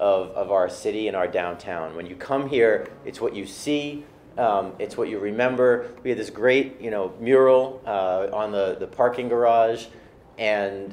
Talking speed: 185 wpm